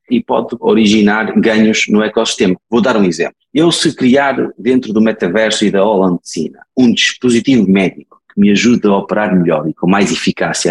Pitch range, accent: 100-135 Hz, Portuguese